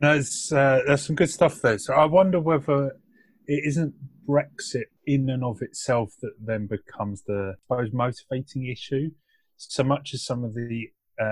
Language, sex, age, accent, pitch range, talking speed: English, male, 30-49, British, 100-130 Hz, 175 wpm